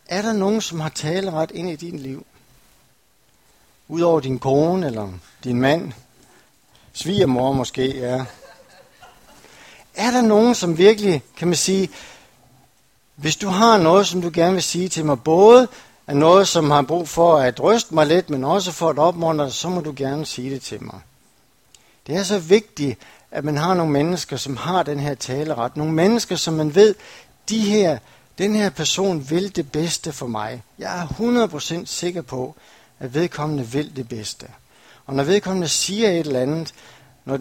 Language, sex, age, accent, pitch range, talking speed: Danish, male, 60-79, native, 130-180 Hz, 180 wpm